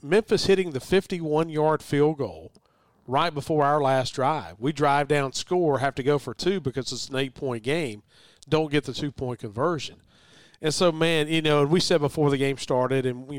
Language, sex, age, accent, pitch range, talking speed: English, male, 40-59, American, 130-155 Hz, 195 wpm